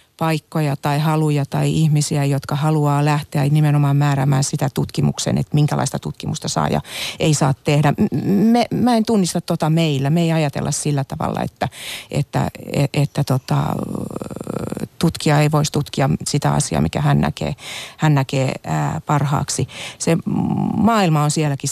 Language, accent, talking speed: Finnish, native, 135 wpm